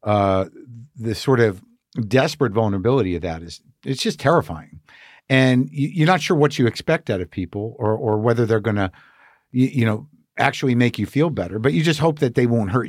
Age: 50-69